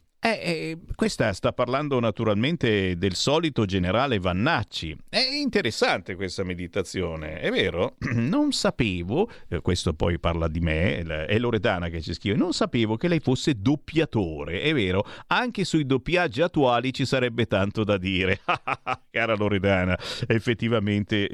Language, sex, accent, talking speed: Italian, male, native, 135 wpm